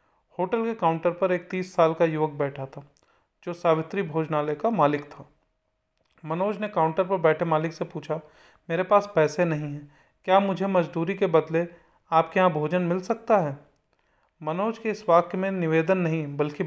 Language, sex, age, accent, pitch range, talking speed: Hindi, male, 30-49, native, 155-185 Hz, 175 wpm